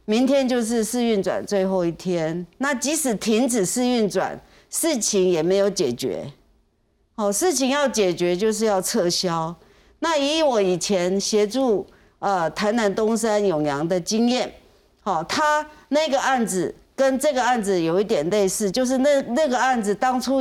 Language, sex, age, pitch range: Chinese, female, 50-69, 190-250 Hz